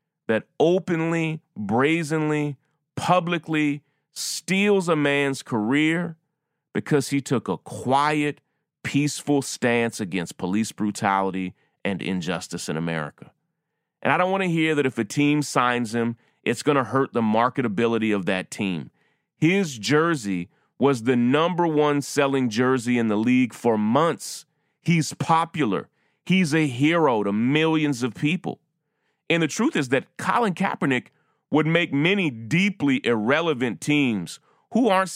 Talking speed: 135 wpm